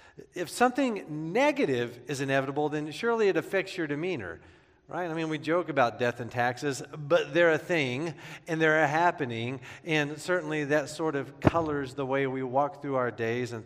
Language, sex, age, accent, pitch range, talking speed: English, male, 40-59, American, 140-190 Hz, 185 wpm